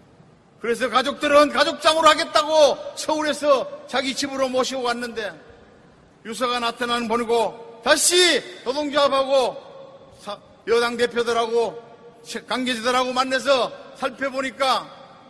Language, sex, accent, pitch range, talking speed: English, male, Korean, 240-310 Hz, 70 wpm